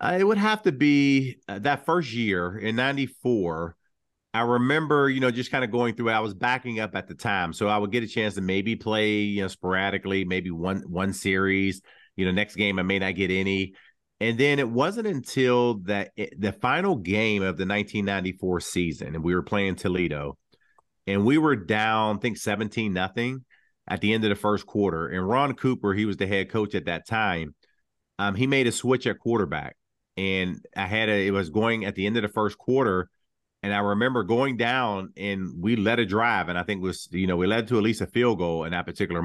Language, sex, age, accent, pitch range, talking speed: English, male, 40-59, American, 95-120 Hz, 225 wpm